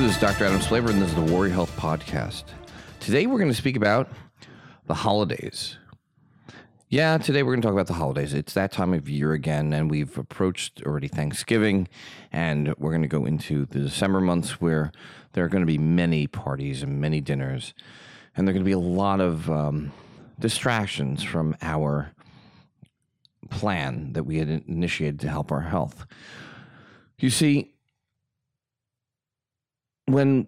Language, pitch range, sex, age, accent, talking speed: English, 75-110 Hz, male, 30-49, American, 165 wpm